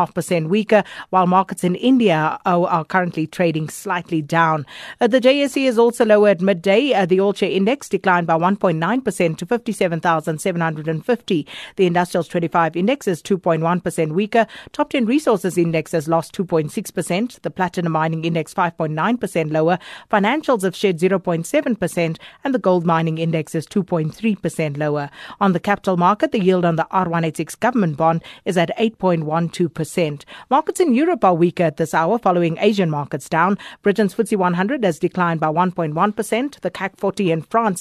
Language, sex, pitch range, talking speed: English, female, 165-205 Hz, 165 wpm